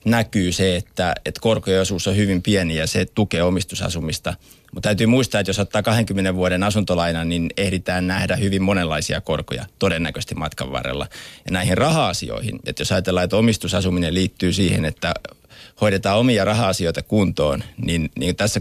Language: Finnish